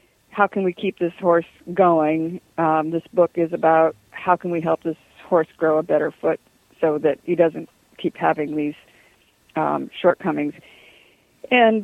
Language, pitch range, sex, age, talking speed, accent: English, 160-180 Hz, female, 50-69, 160 wpm, American